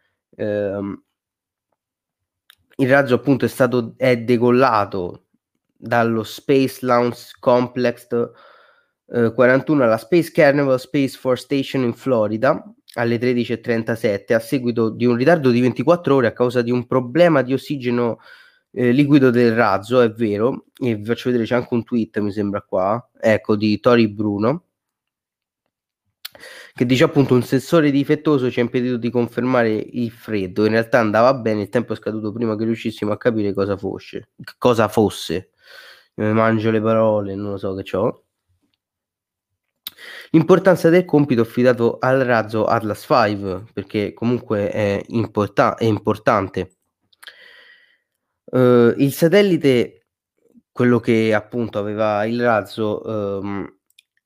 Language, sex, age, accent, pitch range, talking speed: Italian, male, 20-39, native, 105-130 Hz, 135 wpm